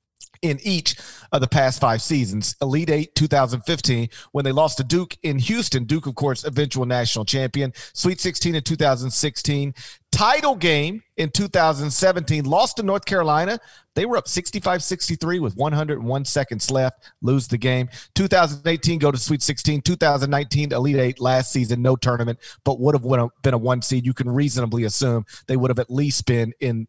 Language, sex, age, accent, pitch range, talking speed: English, male, 40-59, American, 130-165 Hz, 170 wpm